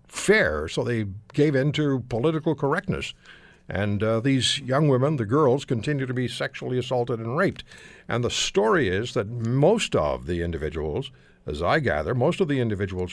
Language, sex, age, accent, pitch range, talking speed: English, male, 60-79, American, 105-145 Hz, 175 wpm